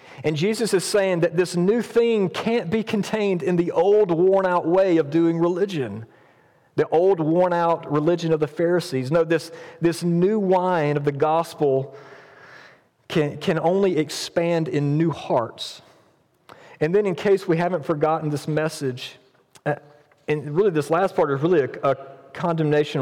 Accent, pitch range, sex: American, 135-175 Hz, male